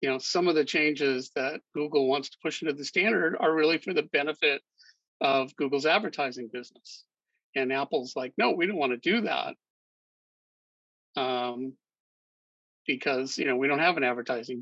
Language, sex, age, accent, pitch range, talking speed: English, male, 50-69, American, 125-160 Hz, 170 wpm